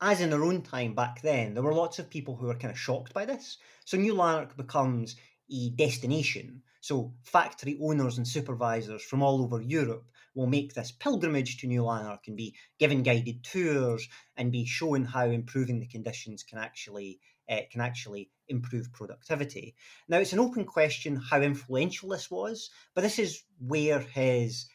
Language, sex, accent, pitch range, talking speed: English, male, British, 120-145 Hz, 180 wpm